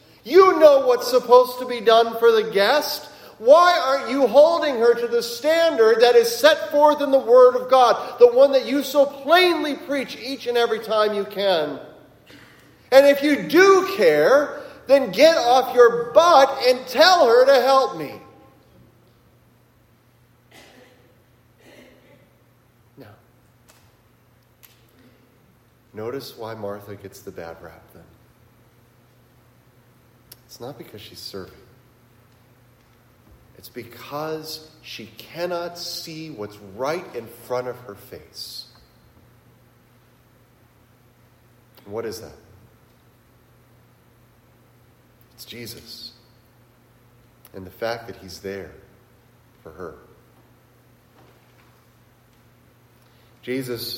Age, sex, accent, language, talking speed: 40-59, male, American, English, 105 wpm